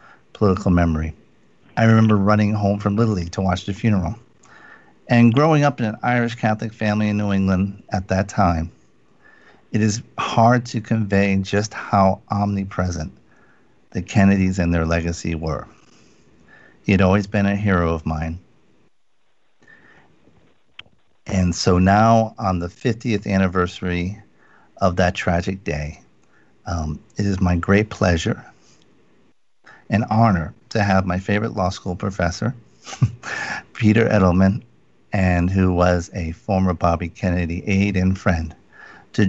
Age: 50-69